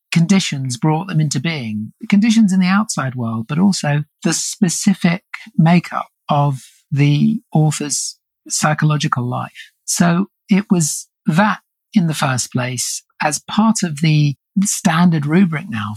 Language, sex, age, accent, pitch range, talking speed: English, male, 50-69, British, 135-190 Hz, 130 wpm